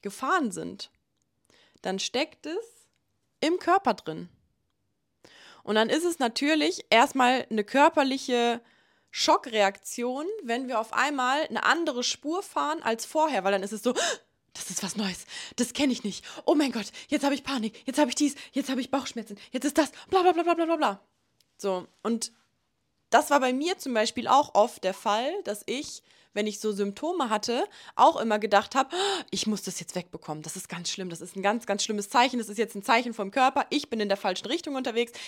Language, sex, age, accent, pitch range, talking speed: German, female, 20-39, German, 210-295 Hz, 200 wpm